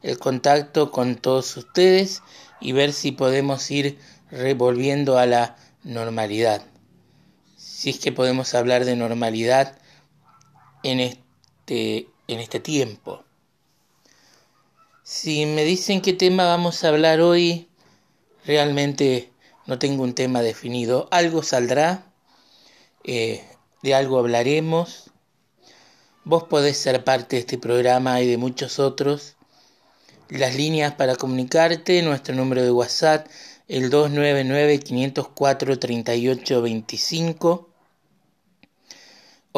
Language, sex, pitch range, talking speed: Spanish, male, 125-160 Hz, 100 wpm